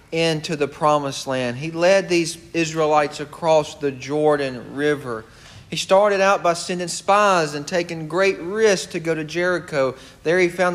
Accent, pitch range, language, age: American, 150-195 Hz, English, 40-59